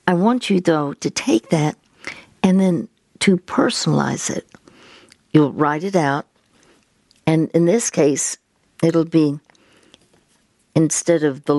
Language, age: English, 60-79